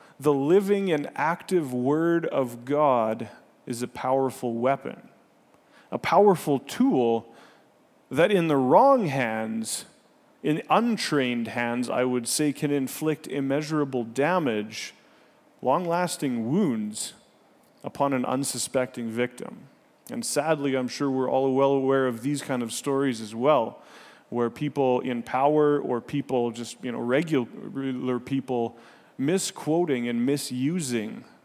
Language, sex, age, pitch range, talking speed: English, male, 30-49, 120-150 Hz, 120 wpm